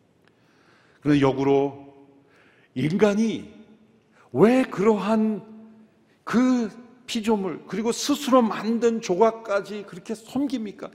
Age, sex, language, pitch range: 40-59, male, Korean, 160-250 Hz